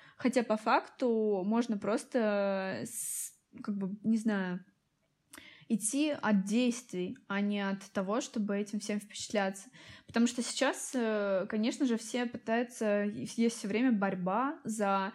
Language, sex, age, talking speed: Russian, female, 20-39, 130 wpm